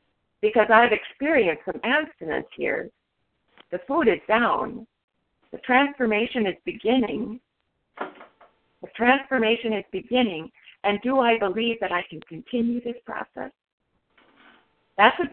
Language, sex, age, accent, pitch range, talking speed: English, female, 50-69, American, 185-250 Hz, 115 wpm